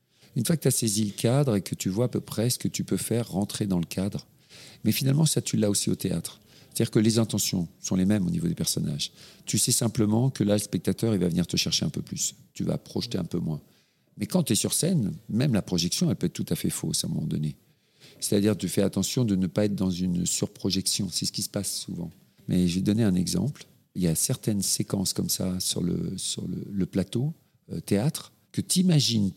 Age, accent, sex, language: 50-69, French, male, French